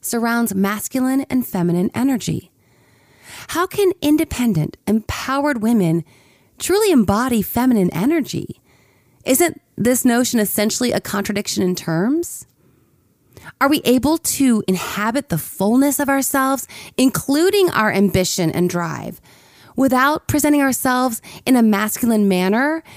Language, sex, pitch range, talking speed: English, female, 185-260 Hz, 110 wpm